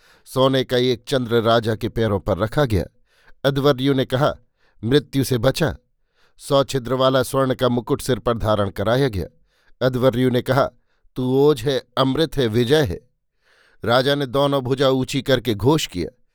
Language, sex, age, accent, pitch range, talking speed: Hindi, male, 50-69, native, 120-140 Hz, 160 wpm